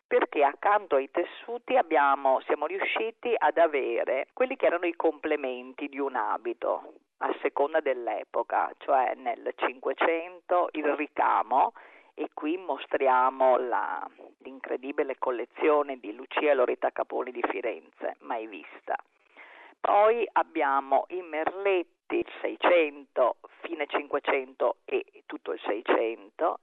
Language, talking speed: Italian, 110 wpm